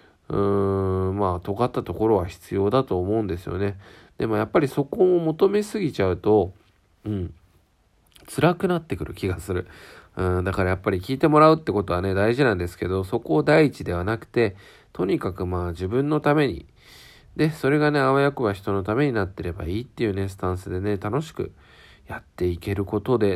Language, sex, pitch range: Japanese, male, 90-120 Hz